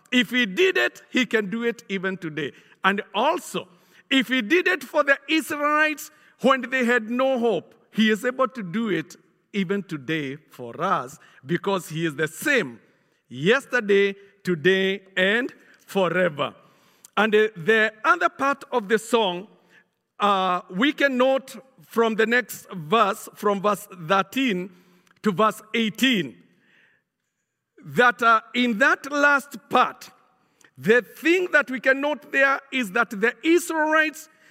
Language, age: English, 50-69